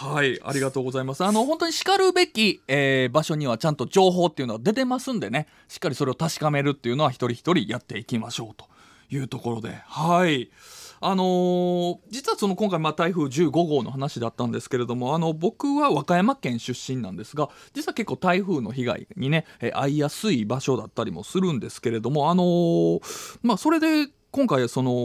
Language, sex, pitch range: Japanese, male, 120-175 Hz